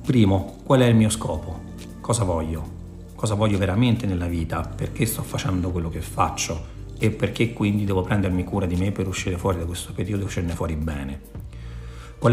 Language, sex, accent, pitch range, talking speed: Italian, male, native, 95-115 Hz, 185 wpm